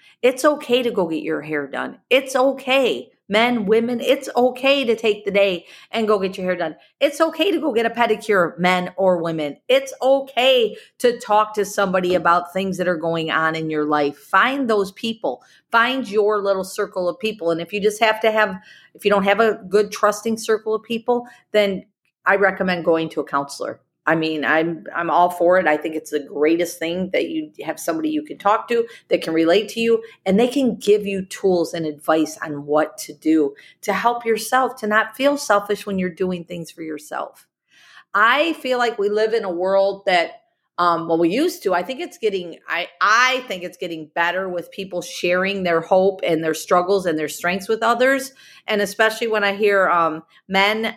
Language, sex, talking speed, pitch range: English, female, 210 wpm, 175-230 Hz